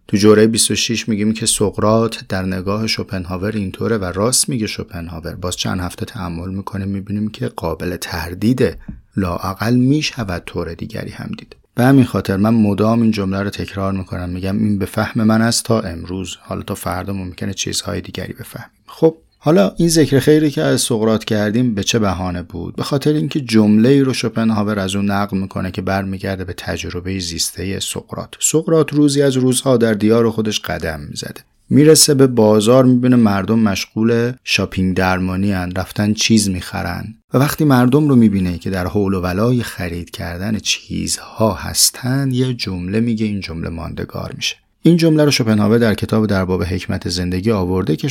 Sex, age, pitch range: male, 30-49, 95-120 Hz